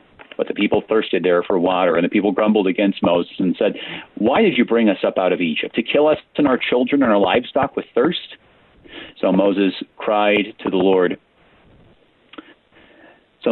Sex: male